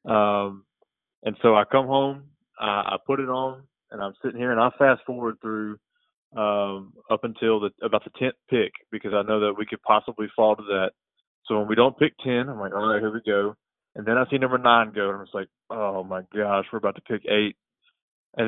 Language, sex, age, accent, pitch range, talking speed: English, male, 20-39, American, 105-120 Hz, 235 wpm